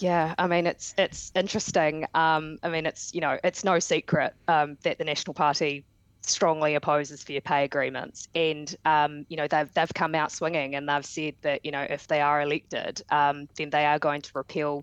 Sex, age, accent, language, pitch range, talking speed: female, 20-39, Australian, English, 150-175 Hz, 205 wpm